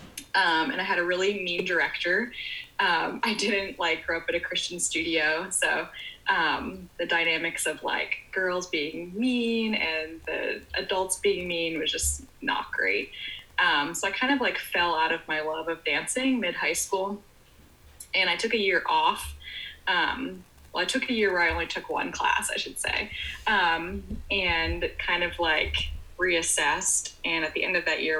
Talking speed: 180 wpm